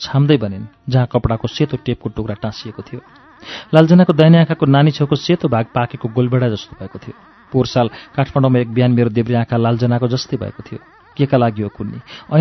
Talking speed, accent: 70 wpm, Indian